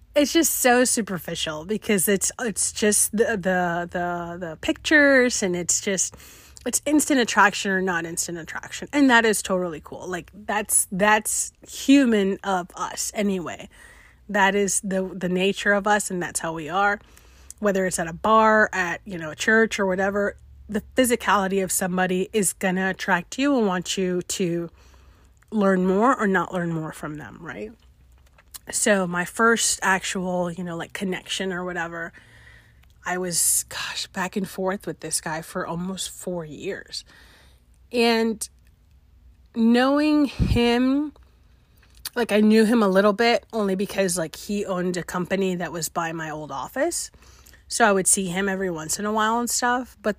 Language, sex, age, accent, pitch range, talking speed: English, female, 30-49, American, 170-215 Hz, 165 wpm